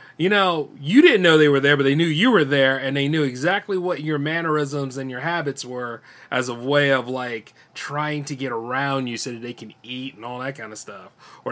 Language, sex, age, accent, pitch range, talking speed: English, male, 30-49, American, 130-170 Hz, 245 wpm